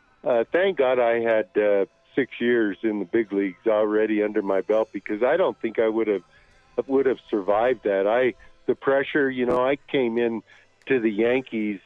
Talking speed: 190 wpm